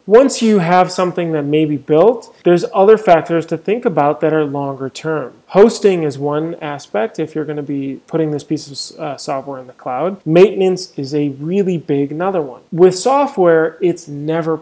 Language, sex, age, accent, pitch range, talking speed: English, male, 20-39, American, 150-180 Hz, 185 wpm